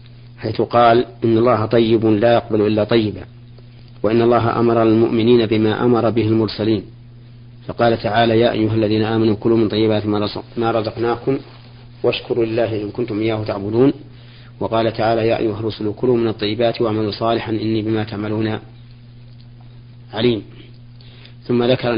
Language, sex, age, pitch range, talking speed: Arabic, male, 40-59, 115-120 Hz, 130 wpm